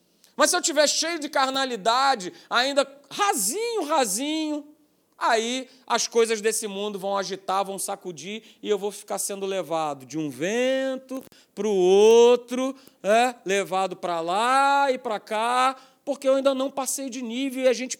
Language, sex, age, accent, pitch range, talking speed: Portuguese, male, 40-59, Brazilian, 205-270 Hz, 160 wpm